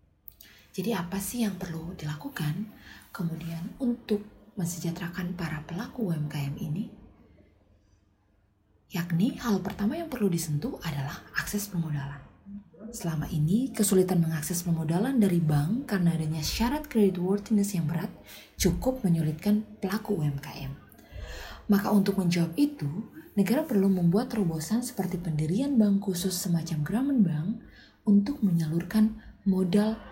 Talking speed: 115 wpm